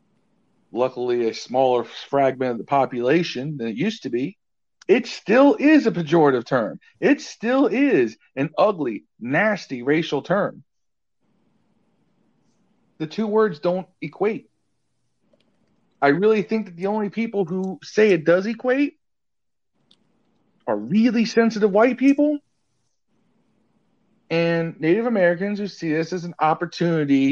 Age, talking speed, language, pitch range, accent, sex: 40-59, 125 wpm, English, 130-200 Hz, American, male